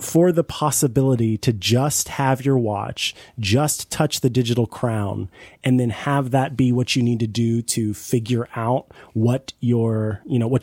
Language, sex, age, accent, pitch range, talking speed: English, male, 30-49, American, 115-140 Hz, 175 wpm